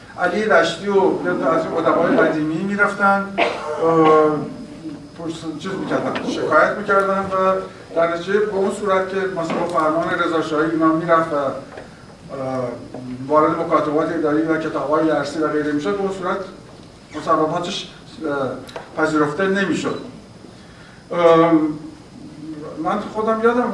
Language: Persian